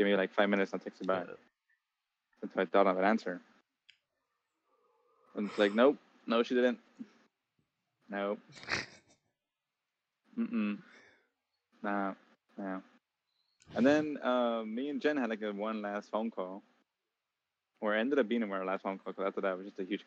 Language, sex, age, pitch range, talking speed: English, male, 20-39, 100-135 Hz, 160 wpm